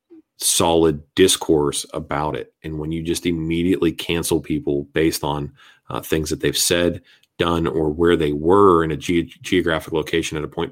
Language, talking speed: English, 170 wpm